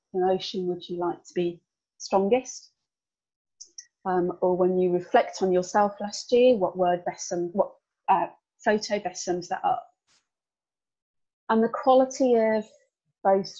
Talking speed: 140 wpm